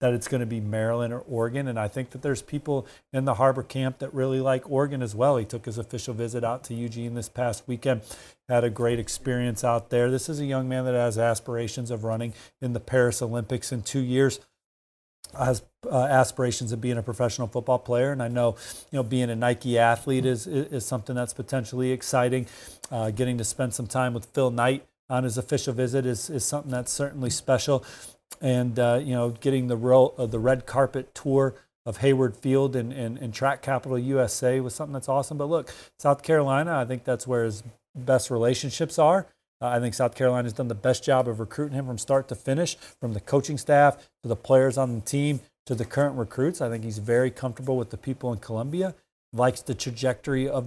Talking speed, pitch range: 215 wpm, 120-135 Hz